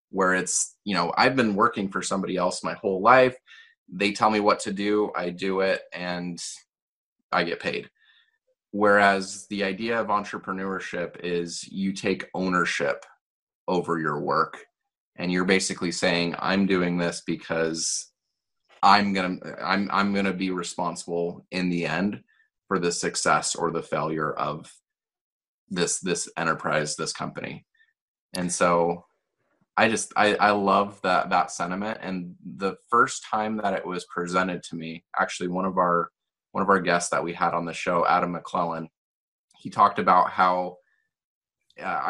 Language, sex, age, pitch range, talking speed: English, male, 30-49, 85-100 Hz, 160 wpm